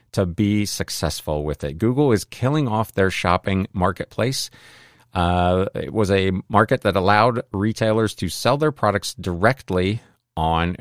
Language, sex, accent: English, male, American